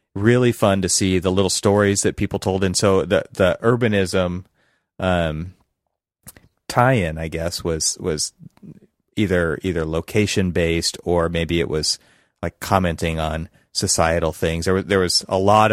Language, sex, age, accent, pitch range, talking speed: English, male, 30-49, American, 80-100 Hz, 155 wpm